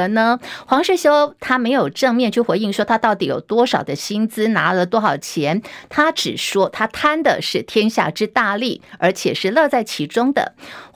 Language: Chinese